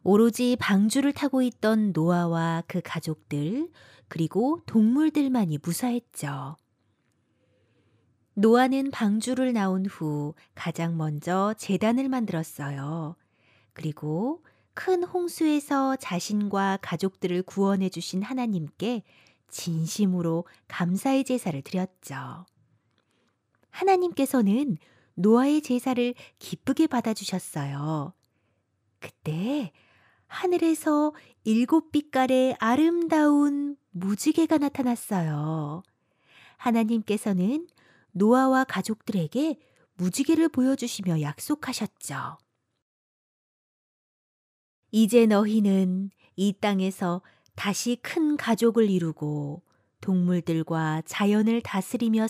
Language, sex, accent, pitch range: Korean, female, native, 165-250 Hz